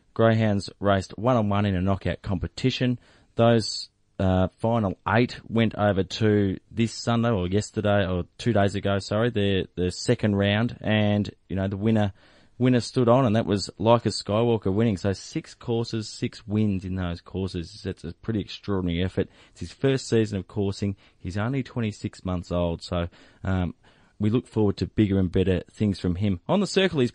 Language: English